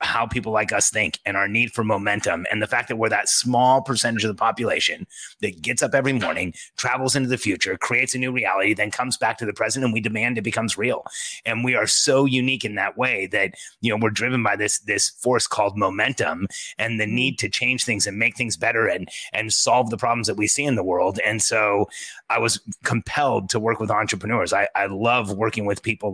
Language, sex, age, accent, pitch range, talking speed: English, male, 30-49, American, 105-125 Hz, 230 wpm